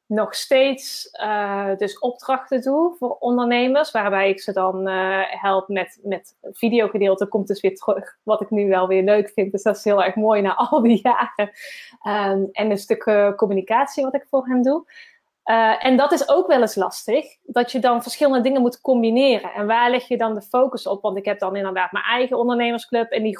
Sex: female